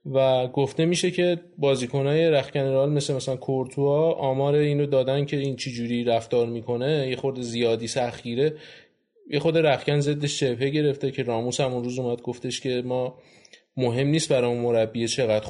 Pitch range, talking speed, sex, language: 120-145 Hz, 160 wpm, male, Persian